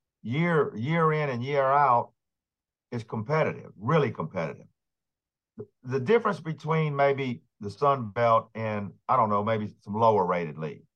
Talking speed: 150 wpm